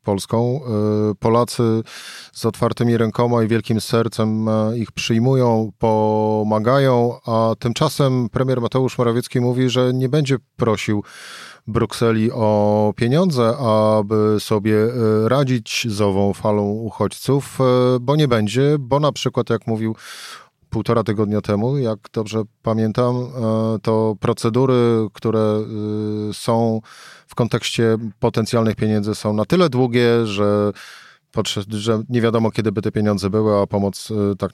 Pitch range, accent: 105-125 Hz, native